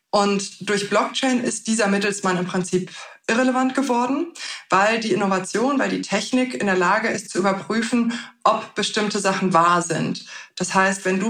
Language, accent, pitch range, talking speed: German, German, 190-235 Hz, 165 wpm